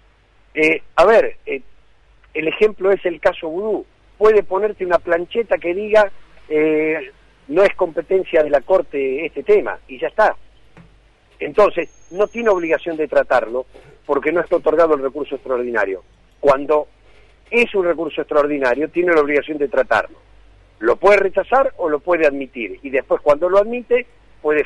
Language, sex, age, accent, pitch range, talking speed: Spanish, male, 50-69, Argentinian, 140-205 Hz, 155 wpm